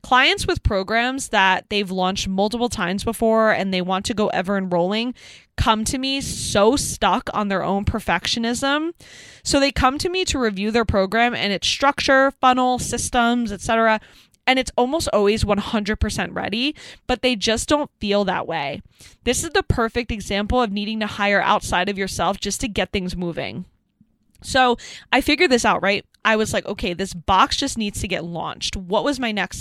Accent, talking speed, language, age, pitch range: American, 185 wpm, English, 20-39, 195-250 Hz